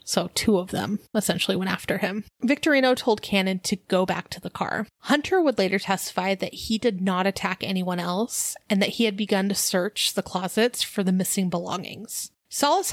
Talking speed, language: 195 wpm, English